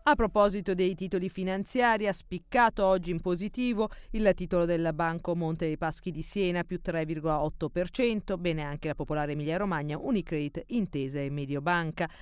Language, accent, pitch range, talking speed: Italian, native, 170-205 Hz, 150 wpm